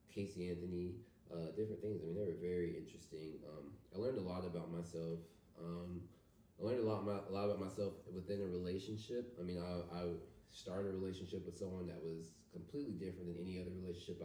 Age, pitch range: 20-39, 85-100 Hz